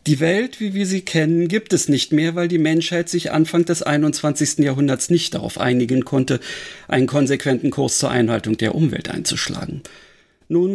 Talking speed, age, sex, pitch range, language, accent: 175 wpm, 40-59, male, 140-190 Hz, German, German